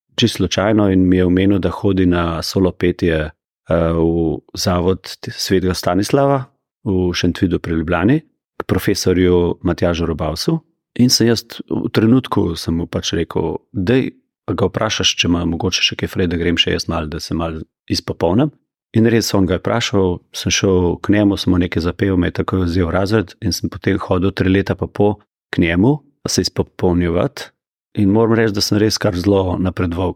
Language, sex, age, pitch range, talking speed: German, male, 30-49, 90-115 Hz, 170 wpm